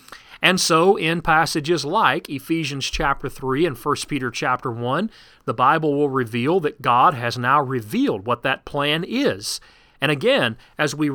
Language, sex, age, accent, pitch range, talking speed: English, male, 40-59, American, 140-195 Hz, 160 wpm